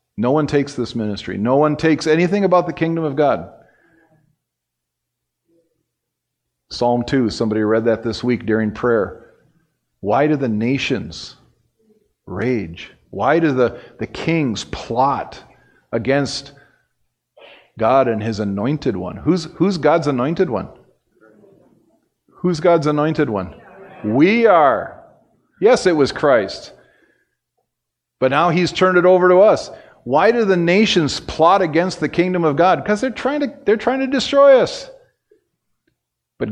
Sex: male